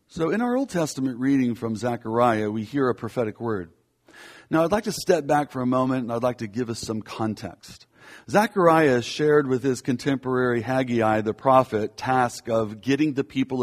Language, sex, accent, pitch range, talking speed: English, male, American, 110-140 Hz, 190 wpm